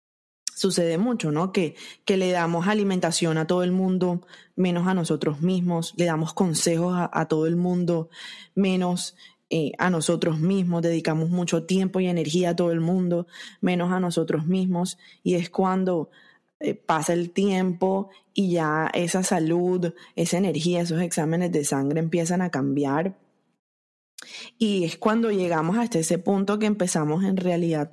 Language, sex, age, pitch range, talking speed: Spanish, female, 20-39, 165-185 Hz, 155 wpm